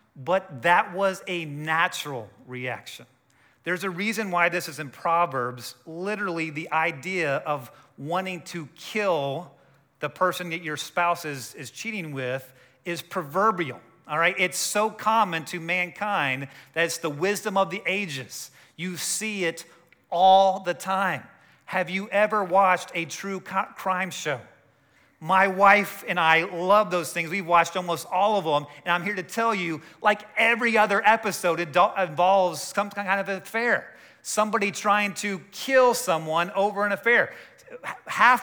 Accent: American